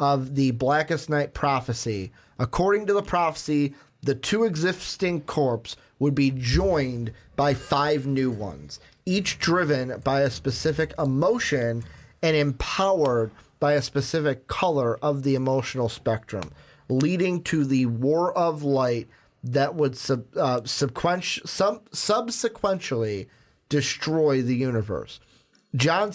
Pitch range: 125-150 Hz